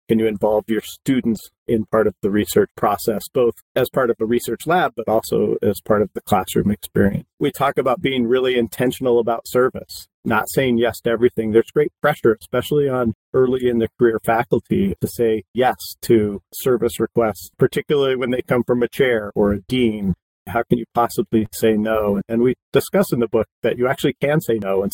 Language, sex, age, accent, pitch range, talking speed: English, male, 40-59, American, 110-125 Hz, 200 wpm